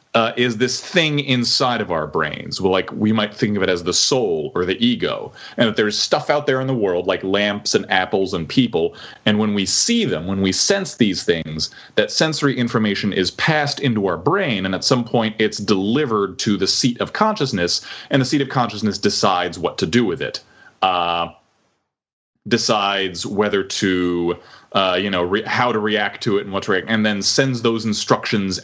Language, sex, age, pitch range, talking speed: English, male, 30-49, 95-135 Hz, 205 wpm